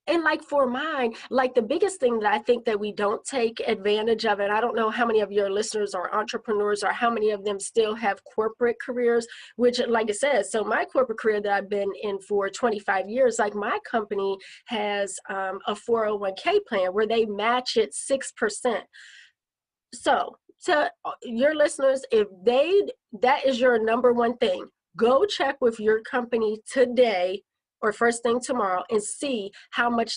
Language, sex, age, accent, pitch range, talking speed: English, female, 30-49, American, 215-265 Hz, 185 wpm